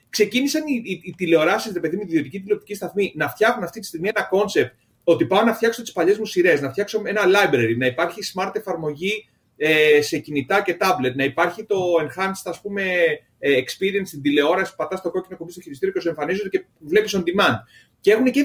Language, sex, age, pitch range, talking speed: Greek, male, 30-49, 150-225 Hz, 205 wpm